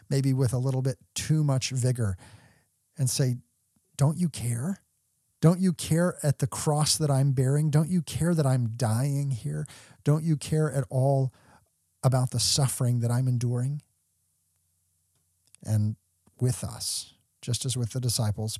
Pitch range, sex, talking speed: 110-145 Hz, male, 155 wpm